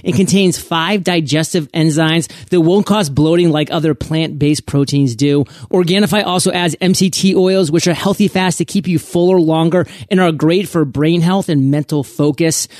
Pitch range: 140-175 Hz